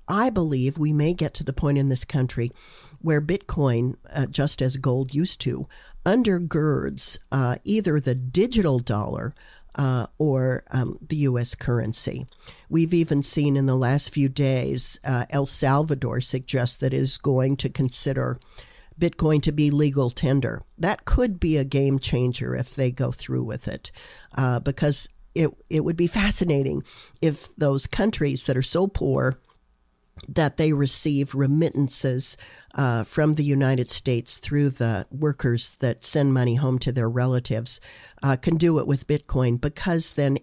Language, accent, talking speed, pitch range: English, American, 160 wpm, 125-155 Hz